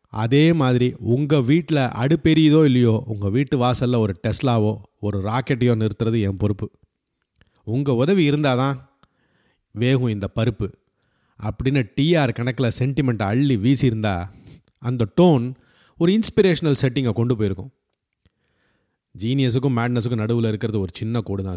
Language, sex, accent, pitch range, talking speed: Tamil, male, native, 110-140 Hz, 120 wpm